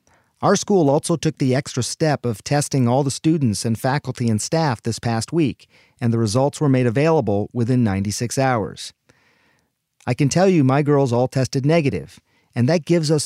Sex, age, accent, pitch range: male, 40-59, American, 120-155 Hz